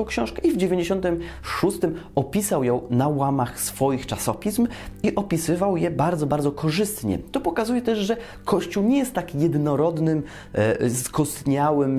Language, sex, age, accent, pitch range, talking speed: Polish, male, 20-39, native, 115-155 Hz, 130 wpm